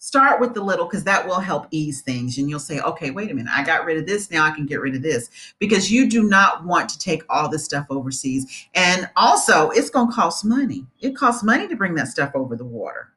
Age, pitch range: 40-59, 155-240 Hz